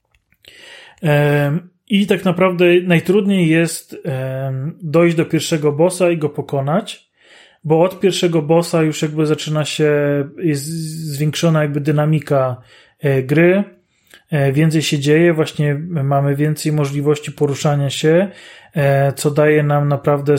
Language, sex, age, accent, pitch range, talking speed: Polish, male, 30-49, native, 145-170 Hz, 110 wpm